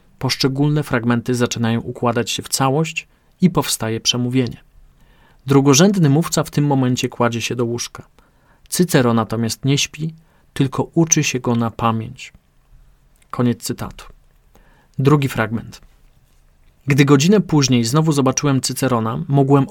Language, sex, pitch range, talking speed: Polish, male, 120-145 Hz, 120 wpm